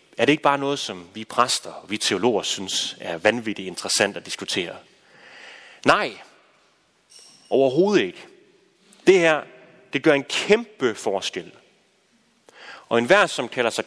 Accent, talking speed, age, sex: native, 140 wpm, 30-49, male